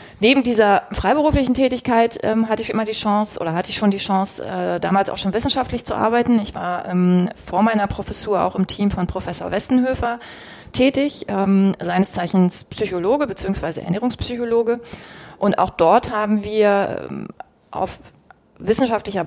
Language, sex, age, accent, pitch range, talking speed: German, female, 20-39, German, 180-225 Hz, 155 wpm